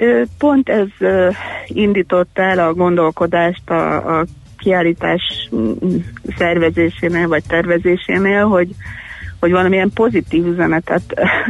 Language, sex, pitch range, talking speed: Hungarian, female, 165-180 Hz, 90 wpm